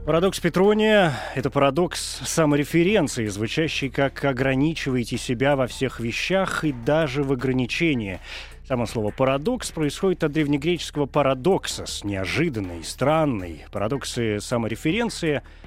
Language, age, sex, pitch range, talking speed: Russian, 30-49, male, 120-155 Hz, 105 wpm